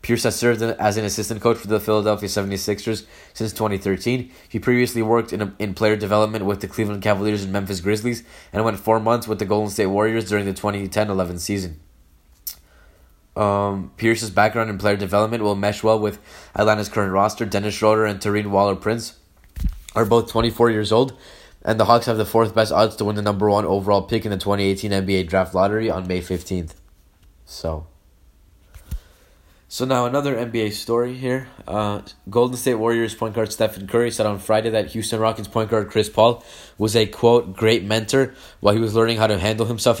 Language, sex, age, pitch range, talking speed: English, male, 20-39, 100-115 Hz, 185 wpm